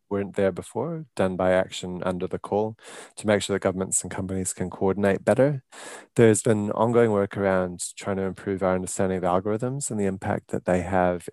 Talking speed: 195 wpm